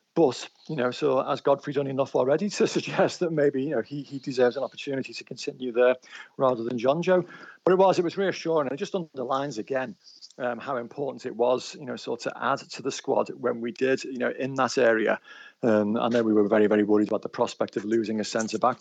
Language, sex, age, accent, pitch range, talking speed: English, male, 40-59, British, 120-145 Hz, 235 wpm